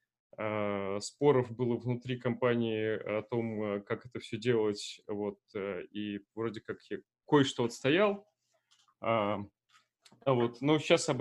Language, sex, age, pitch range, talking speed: Russian, male, 20-39, 120-145 Hz, 120 wpm